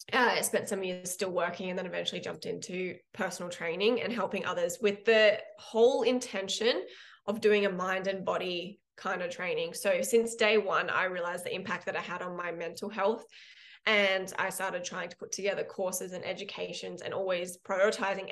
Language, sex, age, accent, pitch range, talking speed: English, female, 20-39, Australian, 180-210 Hz, 190 wpm